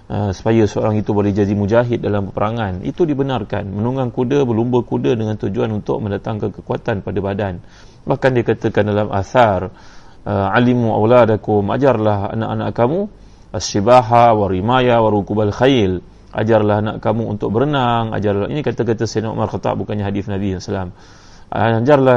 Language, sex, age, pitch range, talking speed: Malay, male, 30-49, 105-130 Hz, 145 wpm